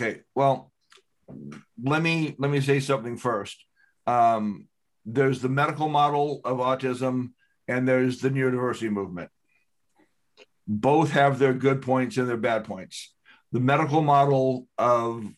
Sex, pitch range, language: male, 120-140 Hz, English